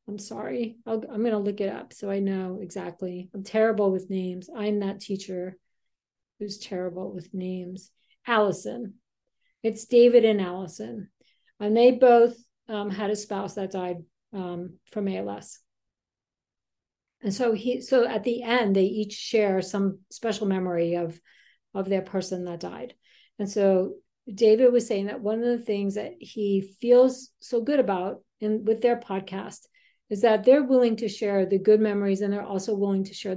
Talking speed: 170 wpm